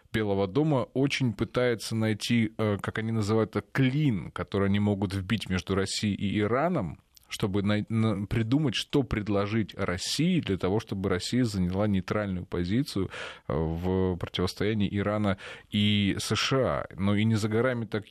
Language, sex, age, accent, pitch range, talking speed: Russian, male, 20-39, native, 90-110 Hz, 135 wpm